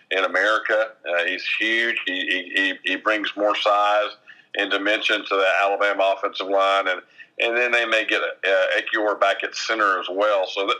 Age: 50-69